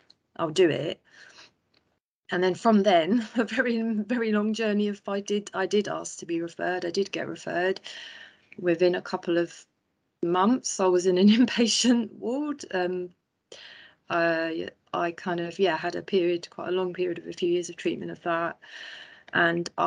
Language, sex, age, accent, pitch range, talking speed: English, female, 30-49, British, 160-185 Hz, 175 wpm